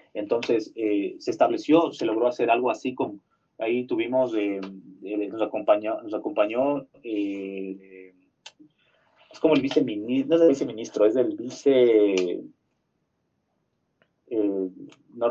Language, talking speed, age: Spanish, 130 wpm, 30-49